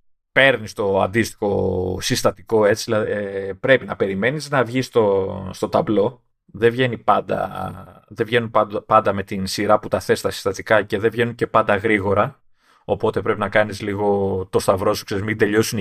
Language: Greek